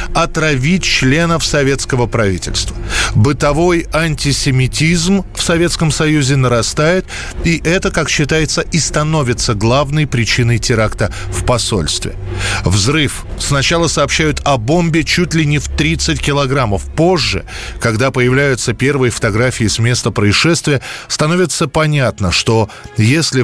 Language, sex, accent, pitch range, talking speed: Russian, male, native, 115-155 Hz, 115 wpm